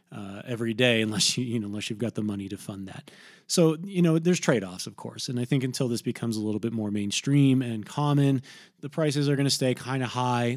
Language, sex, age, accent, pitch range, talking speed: English, male, 20-39, American, 110-145 Hz, 255 wpm